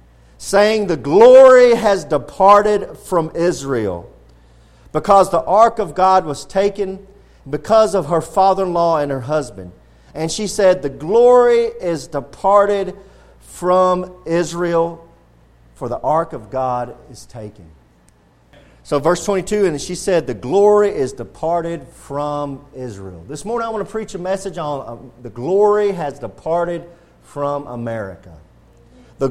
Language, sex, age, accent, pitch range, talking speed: English, male, 40-59, American, 130-200 Hz, 135 wpm